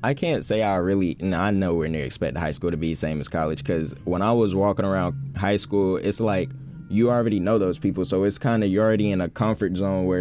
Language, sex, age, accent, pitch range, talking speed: English, male, 10-29, American, 90-105 Hz, 265 wpm